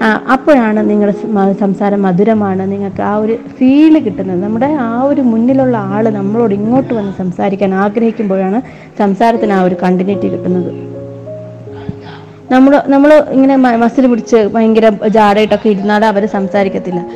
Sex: female